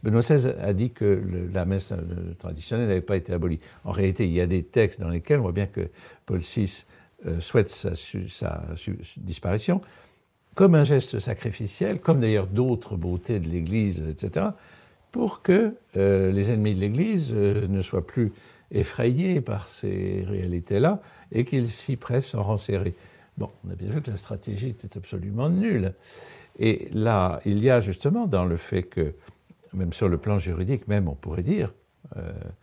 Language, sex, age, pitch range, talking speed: French, male, 60-79, 95-125 Hz, 180 wpm